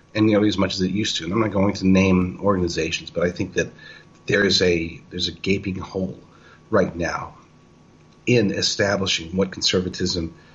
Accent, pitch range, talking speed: American, 90-110 Hz, 190 wpm